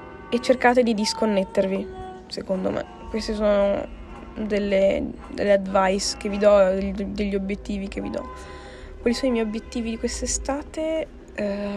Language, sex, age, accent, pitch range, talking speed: Italian, female, 10-29, native, 195-245 Hz, 135 wpm